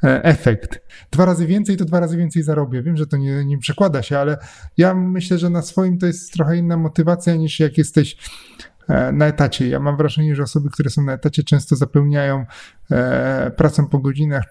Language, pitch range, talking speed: Polish, 120-150 Hz, 190 wpm